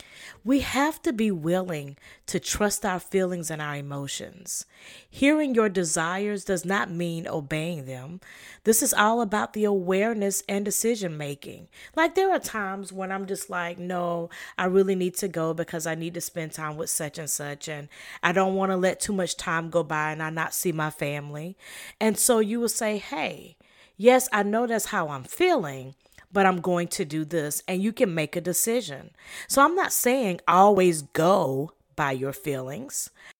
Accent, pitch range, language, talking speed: American, 155-210 Hz, English, 185 wpm